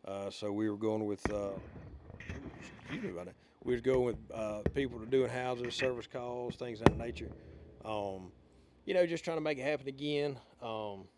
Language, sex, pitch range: English, male, 100-130 Hz